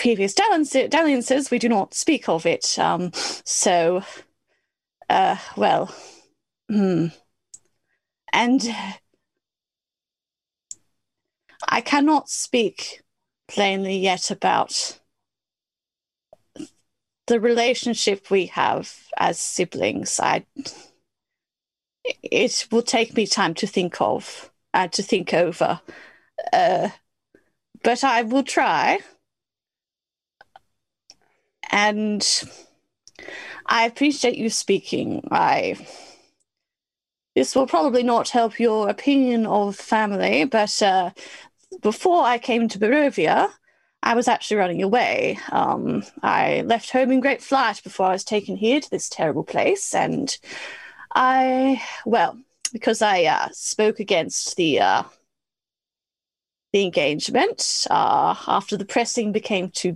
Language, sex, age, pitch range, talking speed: English, female, 30-49, 200-275 Hz, 105 wpm